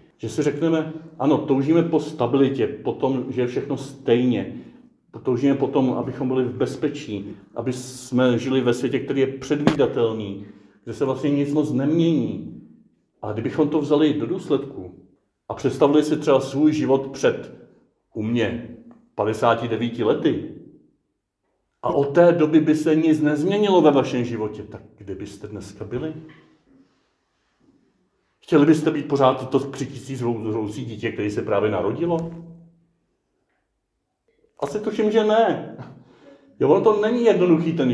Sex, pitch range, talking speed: male, 120-155 Hz, 140 wpm